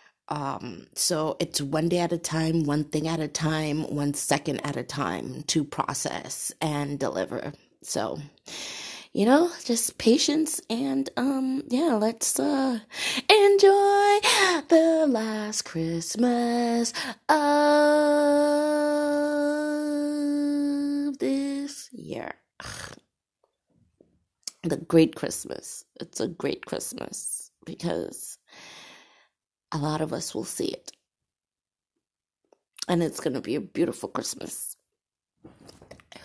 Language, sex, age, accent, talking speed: English, female, 20-39, American, 105 wpm